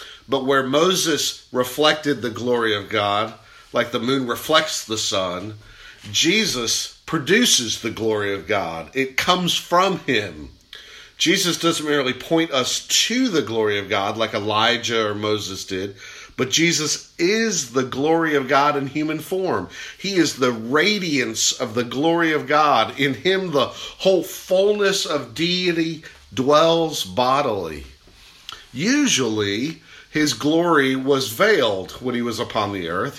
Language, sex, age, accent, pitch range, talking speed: English, male, 50-69, American, 110-165 Hz, 140 wpm